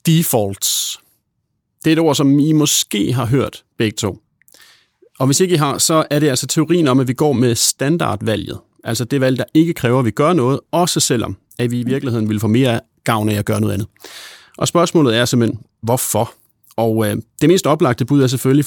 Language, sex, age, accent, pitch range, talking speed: Danish, male, 30-49, native, 115-150 Hz, 210 wpm